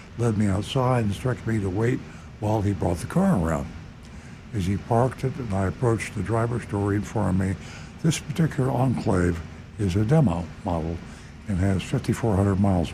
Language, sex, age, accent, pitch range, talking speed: English, male, 60-79, American, 90-115 Hz, 175 wpm